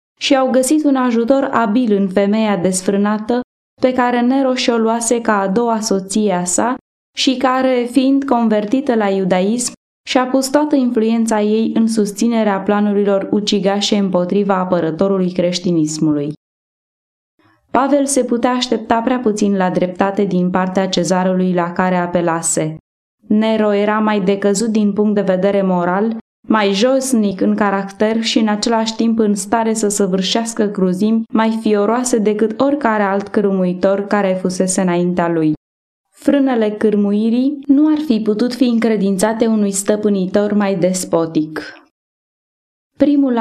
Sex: female